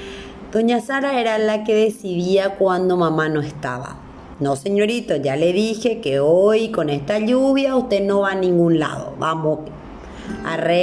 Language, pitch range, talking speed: Spanish, 155-205 Hz, 150 wpm